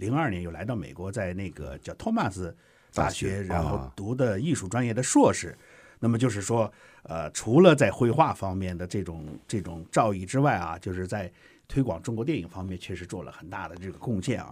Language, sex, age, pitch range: Chinese, male, 60-79, 100-155 Hz